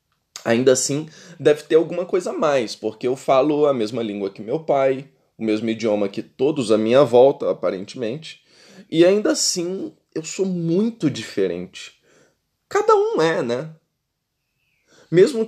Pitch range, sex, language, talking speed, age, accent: 110-160 Hz, male, Portuguese, 145 wpm, 20-39, Brazilian